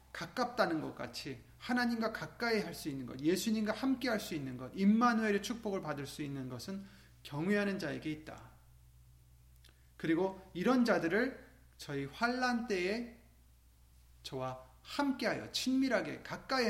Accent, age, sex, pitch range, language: native, 30-49, male, 135-205 Hz, Korean